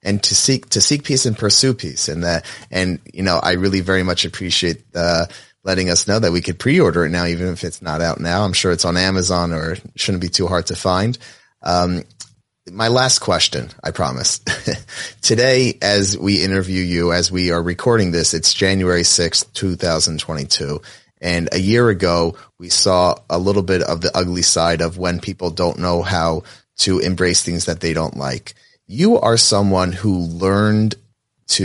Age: 30-49